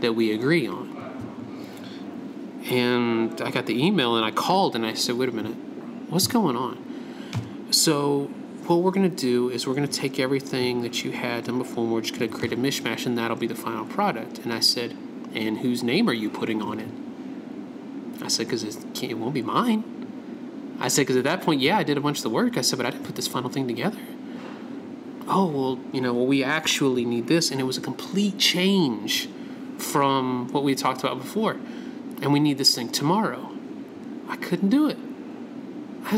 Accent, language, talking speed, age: American, English, 210 wpm, 30-49